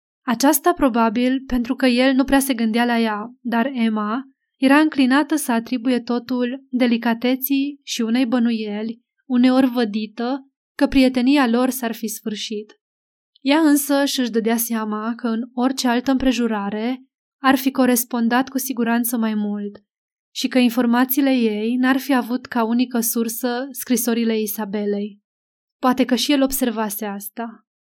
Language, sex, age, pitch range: Romanian, female, 20-39, 225-265 Hz